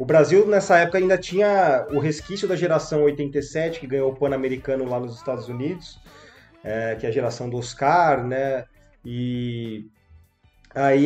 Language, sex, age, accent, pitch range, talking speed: Portuguese, male, 20-39, Brazilian, 130-180 Hz, 155 wpm